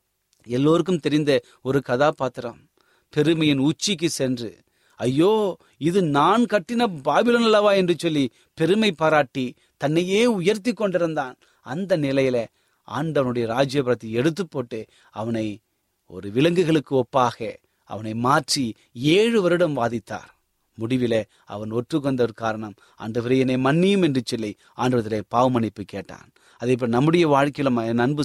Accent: native